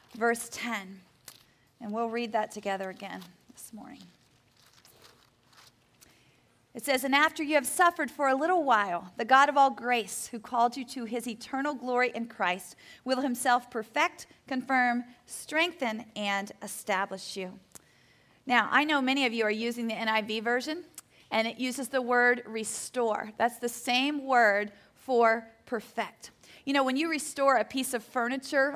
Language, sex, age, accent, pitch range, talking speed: English, female, 40-59, American, 225-270 Hz, 155 wpm